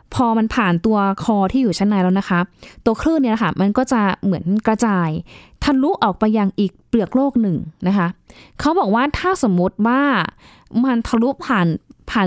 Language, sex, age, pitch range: Thai, female, 20-39, 190-245 Hz